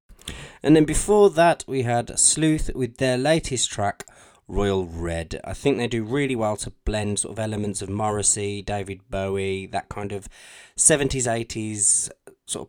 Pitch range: 100-135 Hz